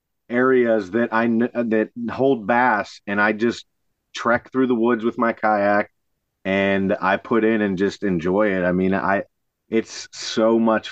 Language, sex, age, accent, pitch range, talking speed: English, male, 30-49, American, 100-120 Hz, 165 wpm